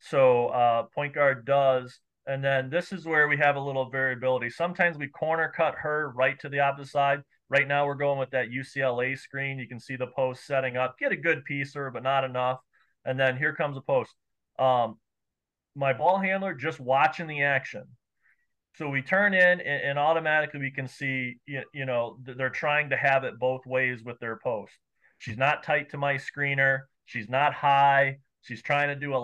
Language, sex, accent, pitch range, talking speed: English, male, American, 130-150 Hz, 200 wpm